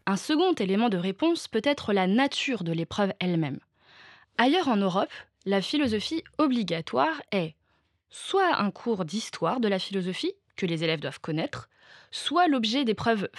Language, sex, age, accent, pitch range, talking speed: French, female, 20-39, French, 180-265 Hz, 150 wpm